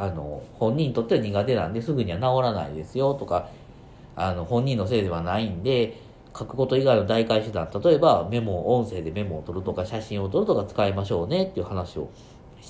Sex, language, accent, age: male, Japanese, native, 40-59